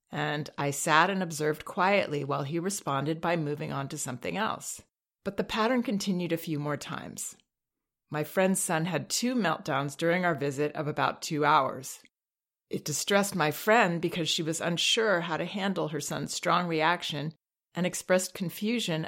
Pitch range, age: 145-180 Hz, 40-59